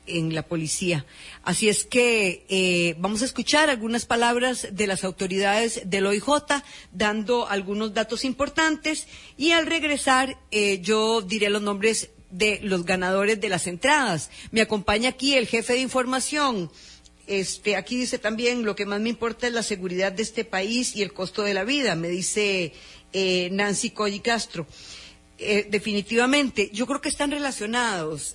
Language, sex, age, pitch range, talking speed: English, female, 40-59, 175-235 Hz, 160 wpm